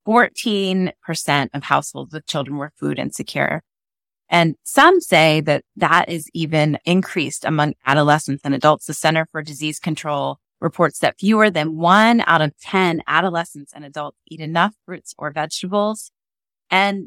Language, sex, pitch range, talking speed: English, female, 155-185 Hz, 145 wpm